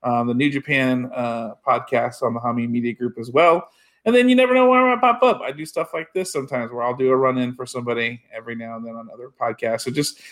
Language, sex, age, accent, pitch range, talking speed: English, male, 40-59, American, 120-145 Hz, 260 wpm